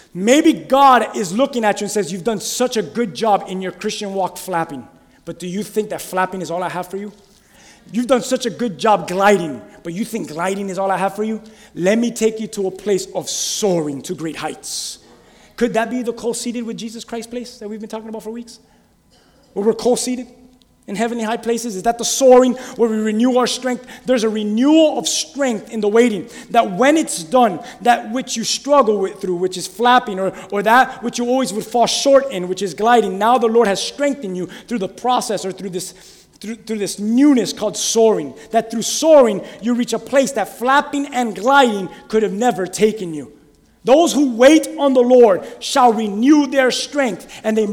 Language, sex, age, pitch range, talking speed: English, male, 30-49, 200-255 Hz, 215 wpm